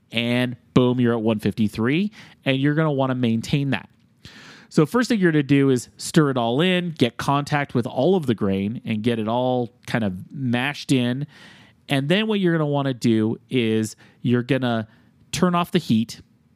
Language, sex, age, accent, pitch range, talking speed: English, male, 30-49, American, 110-140 Hz, 205 wpm